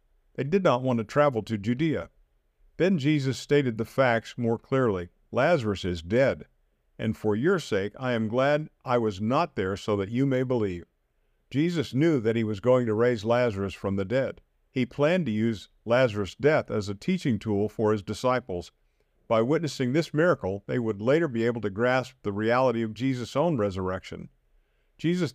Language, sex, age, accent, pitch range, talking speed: English, male, 50-69, American, 105-135 Hz, 180 wpm